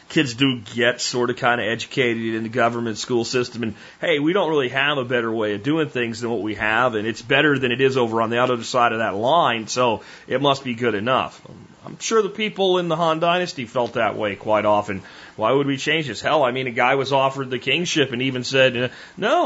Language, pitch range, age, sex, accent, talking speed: German, 120-165 Hz, 30-49, male, American, 245 wpm